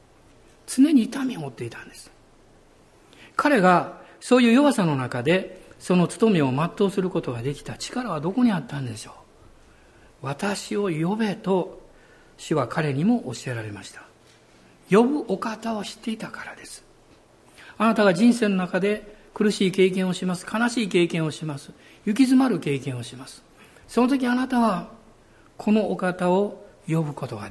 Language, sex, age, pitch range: Japanese, male, 60-79, 150-235 Hz